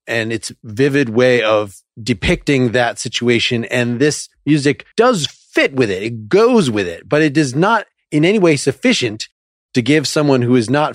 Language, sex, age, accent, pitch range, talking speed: English, male, 30-49, American, 115-145 Hz, 180 wpm